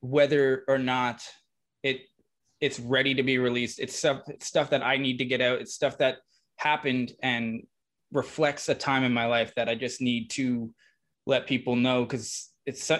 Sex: male